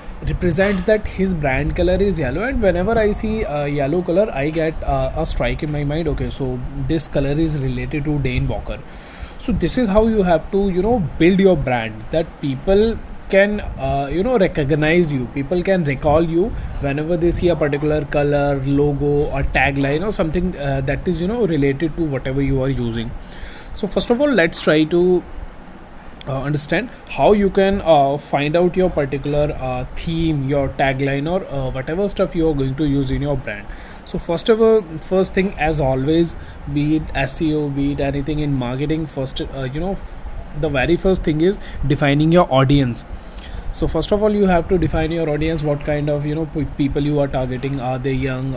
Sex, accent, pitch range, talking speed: male, Indian, 140-175 Hz, 195 wpm